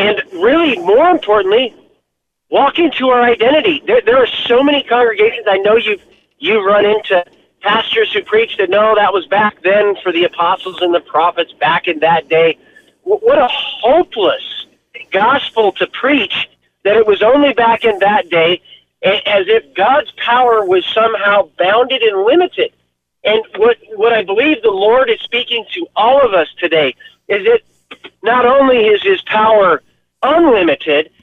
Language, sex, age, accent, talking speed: English, male, 40-59, American, 160 wpm